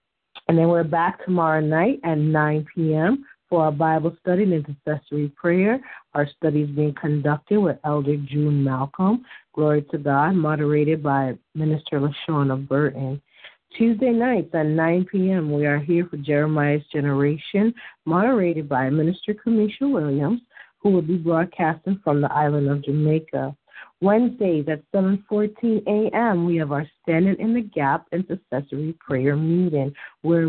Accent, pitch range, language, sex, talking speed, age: American, 150-195 Hz, English, female, 145 wpm, 40-59